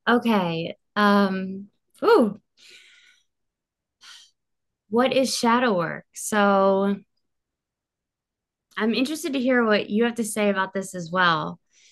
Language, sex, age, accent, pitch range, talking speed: English, female, 20-39, American, 180-210 Hz, 105 wpm